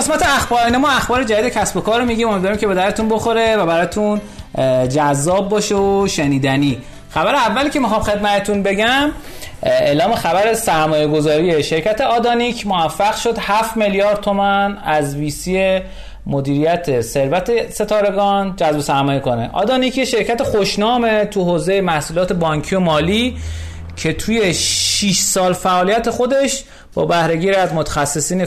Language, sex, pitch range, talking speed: Persian, male, 155-215 Hz, 135 wpm